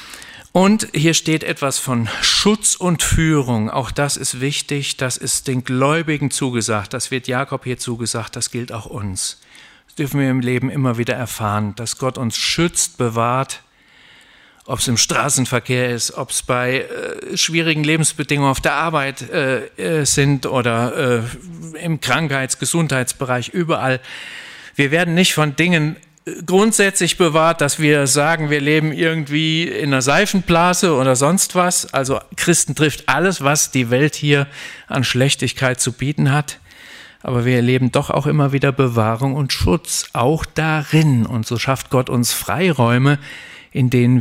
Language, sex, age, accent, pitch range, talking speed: German, male, 50-69, German, 120-155 Hz, 150 wpm